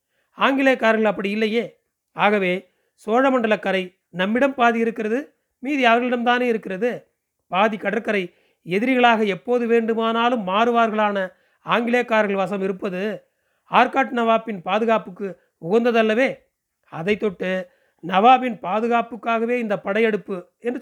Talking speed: 85 wpm